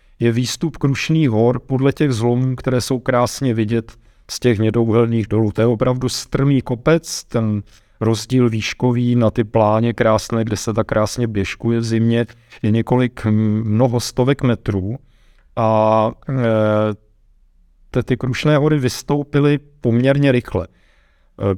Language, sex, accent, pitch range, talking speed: Czech, male, native, 110-125 Hz, 135 wpm